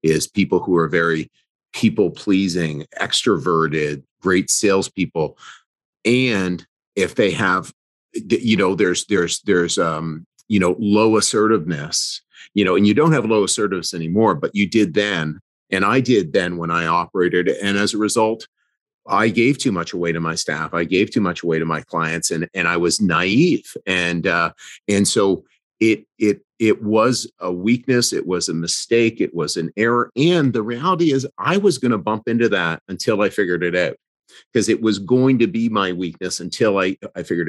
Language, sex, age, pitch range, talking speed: English, male, 40-59, 85-115 Hz, 185 wpm